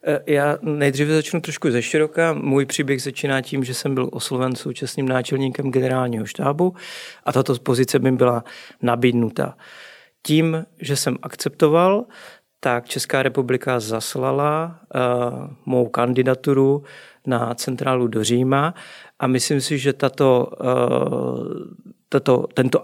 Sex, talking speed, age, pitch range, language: male, 115 wpm, 40-59, 120-140 Hz, Czech